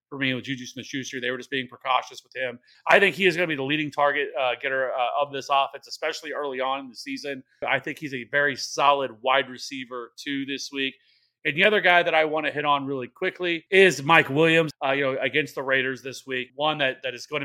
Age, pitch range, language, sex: 30-49, 135-155 Hz, English, male